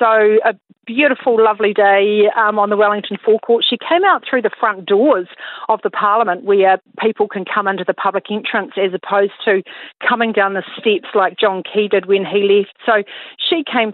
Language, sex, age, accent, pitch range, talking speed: English, female, 40-59, Australian, 195-225 Hz, 195 wpm